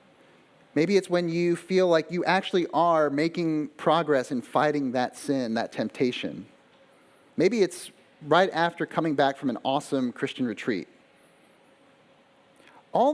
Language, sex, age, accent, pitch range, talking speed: English, male, 30-49, American, 150-210 Hz, 130 wpm